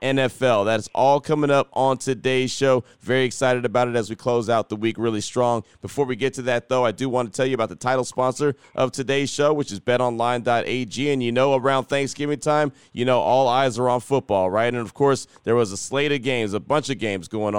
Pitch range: 110-130 Hz